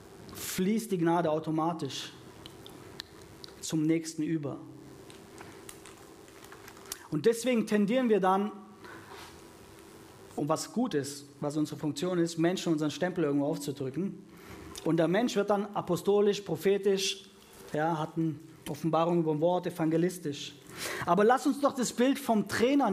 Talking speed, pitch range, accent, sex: 125 wpm, 165-260 Hz, German, male